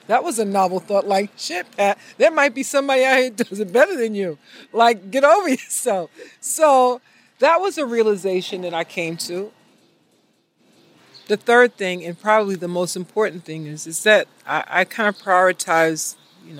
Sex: female